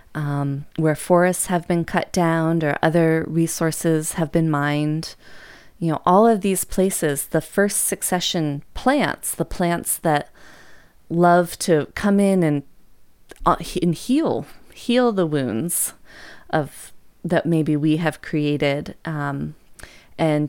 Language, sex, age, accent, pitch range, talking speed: English, female, 30-49, American, 145-175 Hz, 130 wpm